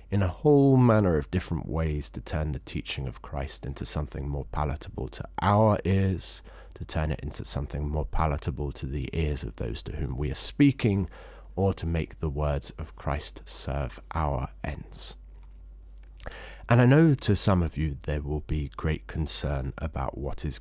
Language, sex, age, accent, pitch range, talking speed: English, male, 30-49, British, 70-90 Hz, 180 wpm